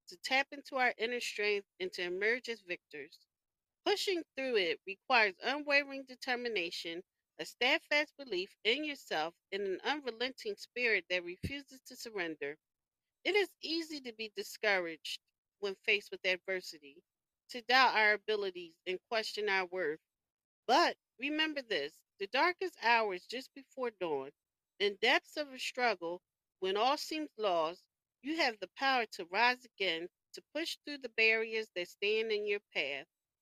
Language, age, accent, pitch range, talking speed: English, 40-59, American, 205-310 Hz, 150 wpm